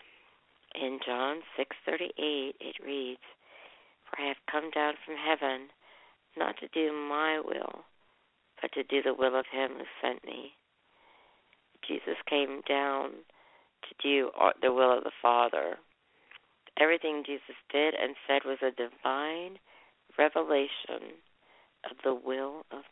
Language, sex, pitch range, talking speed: English, female, 130-150 Hz, 130 wpm